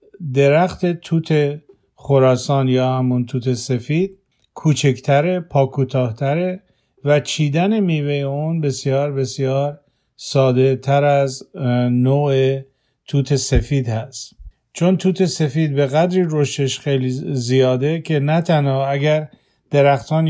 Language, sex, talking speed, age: Persian, male, 105 wpm, 50-69